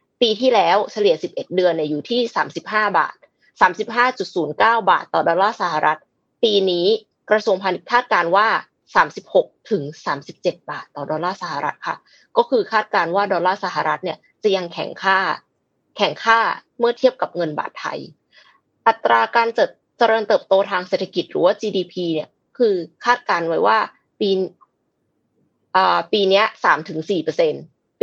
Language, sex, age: Thai, female, 20-39